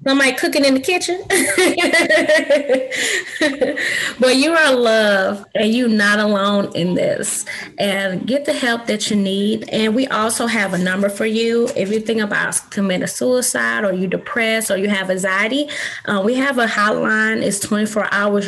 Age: 20-39